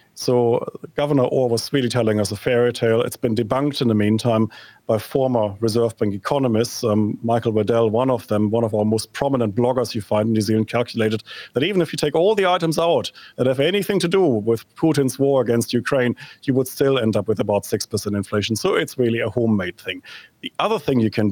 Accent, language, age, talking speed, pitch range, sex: German, English, 40-59, 220 wpm, 115-145 Hz, male